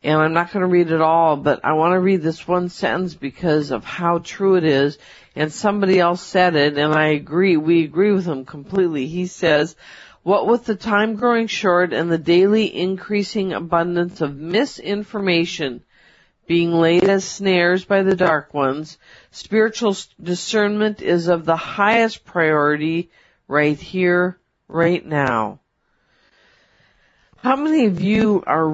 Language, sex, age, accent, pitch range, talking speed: English, female, 50-69, American, 160-200 Hz, 155 wpm